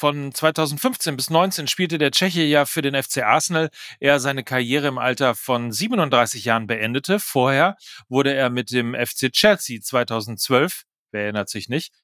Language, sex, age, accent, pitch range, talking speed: German, male, 40-59, German, 115-150 Hz, 165 wpm